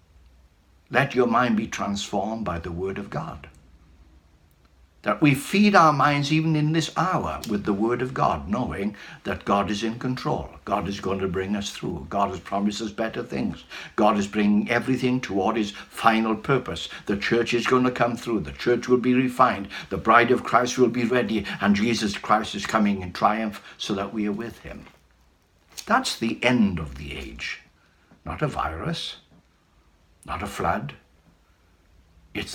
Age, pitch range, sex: 60-79, 80-125 Hz, male